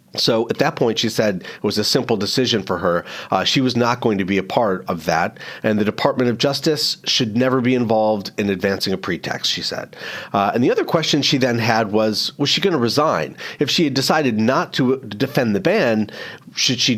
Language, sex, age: English, male, 40-59